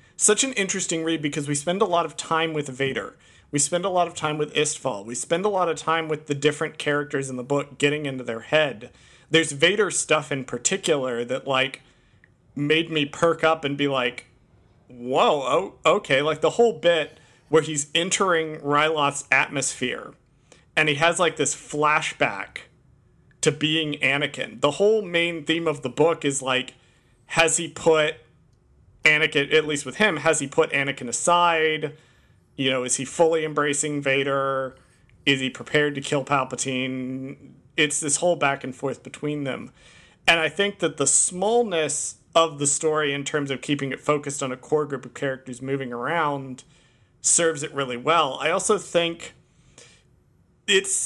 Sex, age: male, 40-59